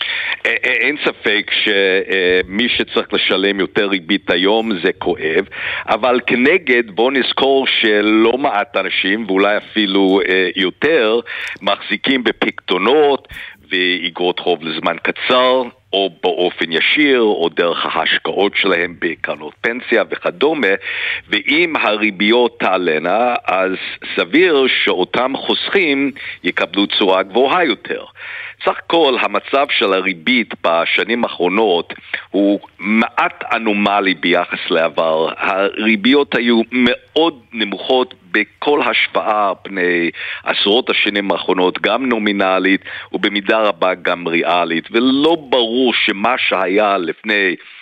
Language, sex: Hebrew, male